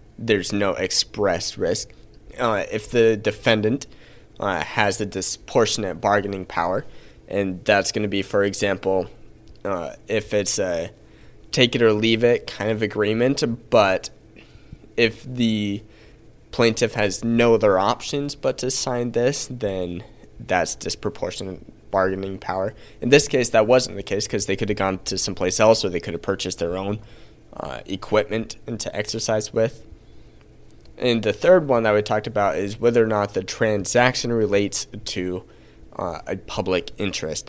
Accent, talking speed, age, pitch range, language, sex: American, 150 wpm, 20-39, 100-120 Hz, English, male